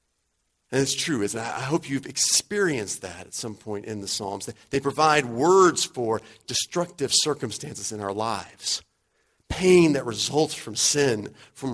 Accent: American